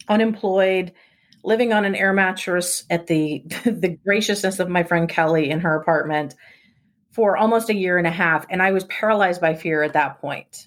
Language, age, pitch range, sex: English, 30-49, 165-200 Hz, female